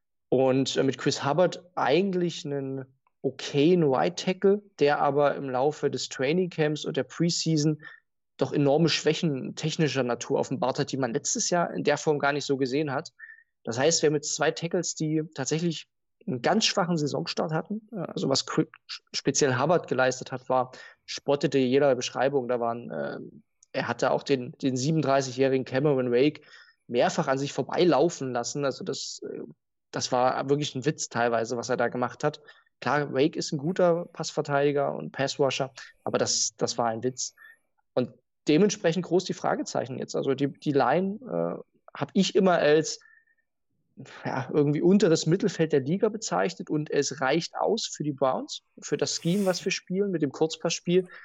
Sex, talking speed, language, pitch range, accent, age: male, 165 wpm, German, 135-175 Hz, German, 20-39